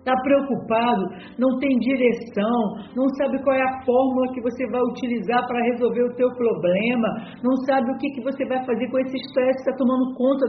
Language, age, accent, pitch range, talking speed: Portuguese, 50-69, Brazilian, 240-270 Hz, 200 wpm